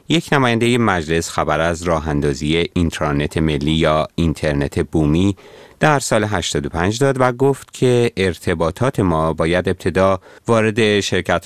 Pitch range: 80-110 Hz